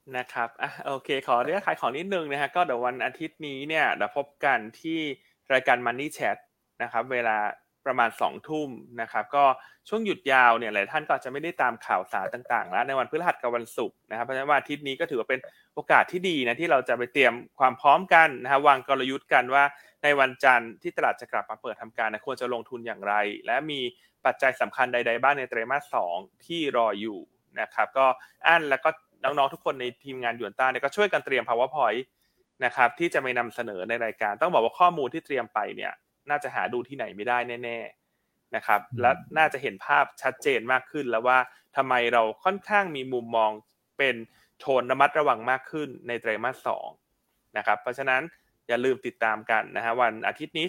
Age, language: 20-39, Thai